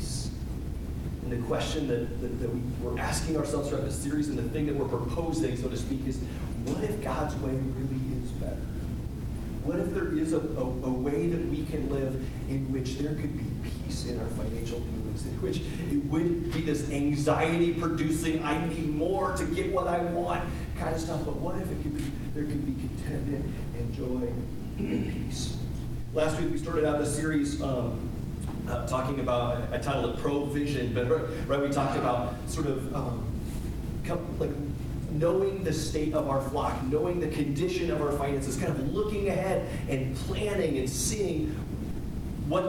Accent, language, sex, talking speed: American, English, male, 180 wpm